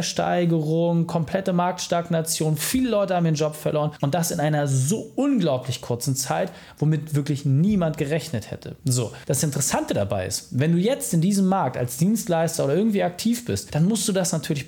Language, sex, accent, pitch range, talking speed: German, male, German, 135-180 Hz, 180 wpm